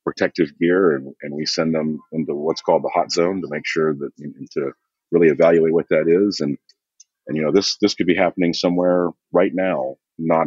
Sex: male